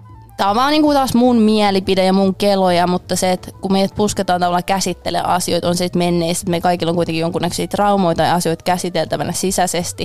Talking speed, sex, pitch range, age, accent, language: 195 wpm, female, 170-195 Hz, 20-39, native, Finnish